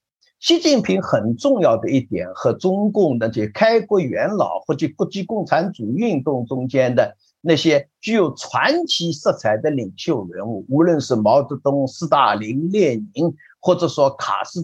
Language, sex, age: Chinese, male, 50-69